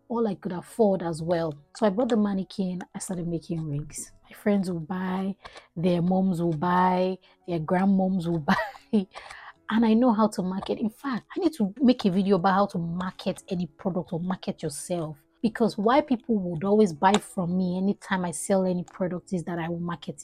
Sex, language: female, English